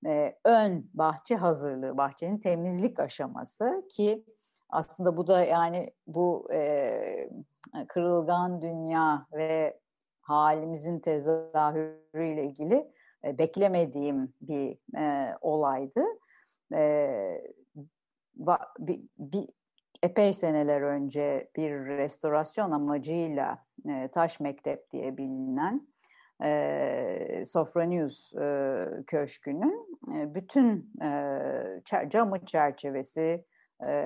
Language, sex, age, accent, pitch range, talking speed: Turkish, female, 50-69, native, 145-220 Hz, 80 wpm